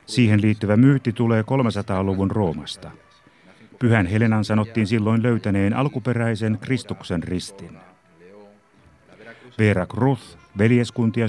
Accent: native